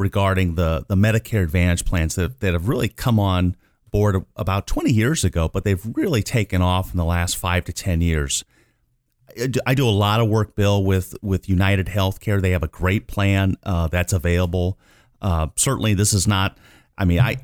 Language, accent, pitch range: English, American, 90-110 Hz